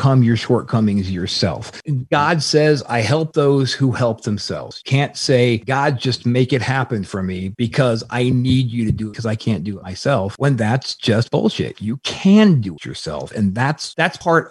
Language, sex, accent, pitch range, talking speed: English, male, American, 115-150 Hz, 190 wpm